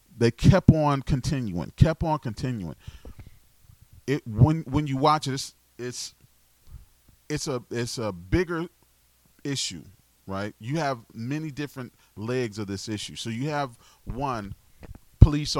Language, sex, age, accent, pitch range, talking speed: English, male, 40-59, American, 90-120 Hz, 135 wpm